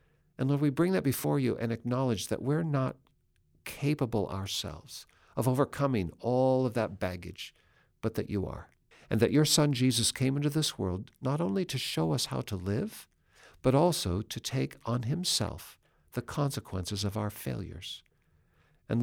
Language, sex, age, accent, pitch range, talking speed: English, male, 60-79, American, 100-130 Hz, 165 wpm